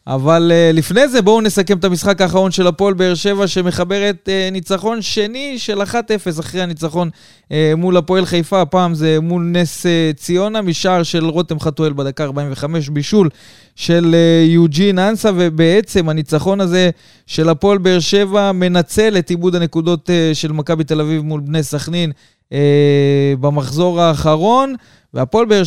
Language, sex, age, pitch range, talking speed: Hebrew, male, 20-39, 150-190 Hz, 140 wpm